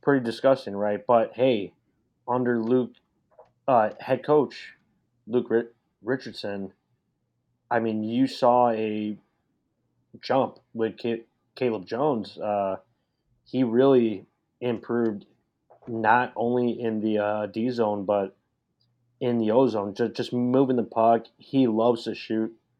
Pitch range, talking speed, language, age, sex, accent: 110-125 Hz, 120 wpm, English, 20-39, male, American